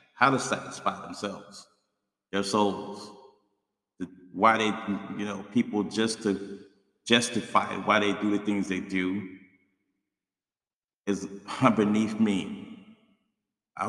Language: English